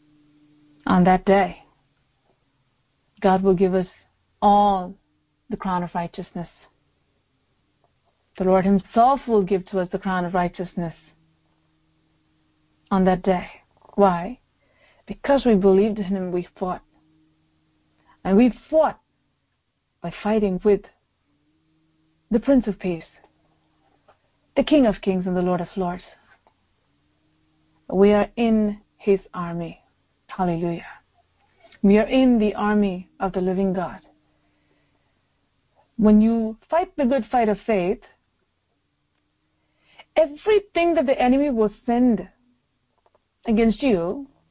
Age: 40-59